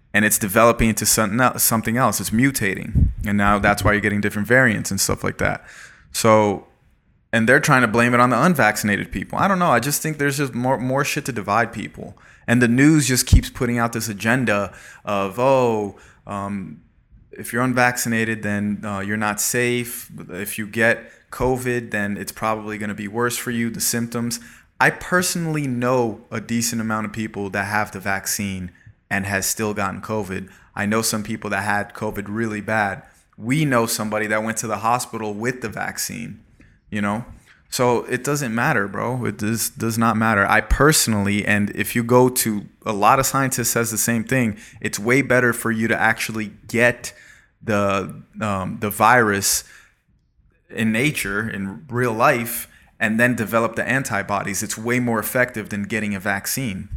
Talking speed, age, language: 185 wpm, 20-39, English